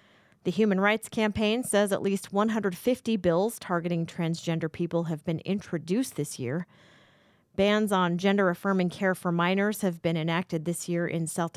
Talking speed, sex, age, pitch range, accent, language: 155 wpm, female, 40-59, 165-200 Hz, American, English